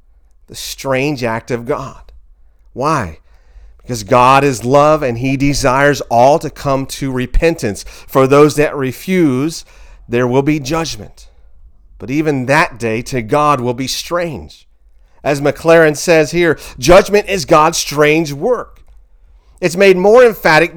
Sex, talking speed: male, 140 wpm